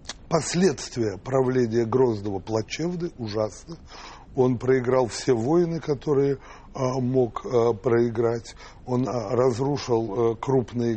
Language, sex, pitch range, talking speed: Russian, male, 115-145 Hz, 80 wpm